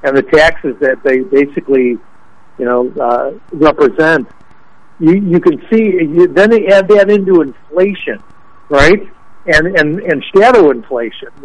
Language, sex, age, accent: English, male, 60-79, American